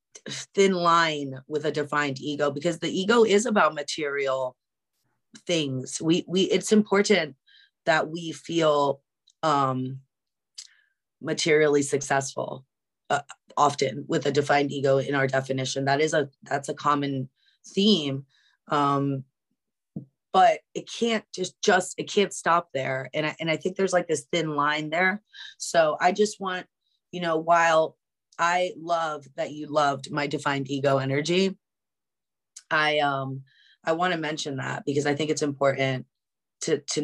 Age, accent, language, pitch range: 30-49, American, English, 145-185 Hz